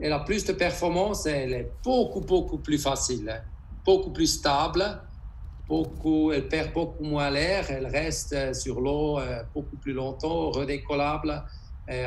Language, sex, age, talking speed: French, male, 60-79, 145 wpm